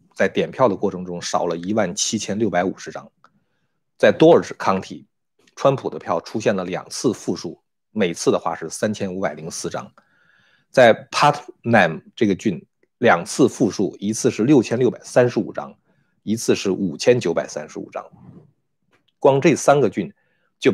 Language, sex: Chinese, male